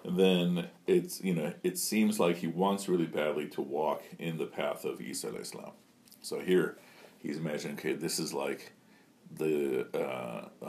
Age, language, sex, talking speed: 40-59, English, male, 170 wpm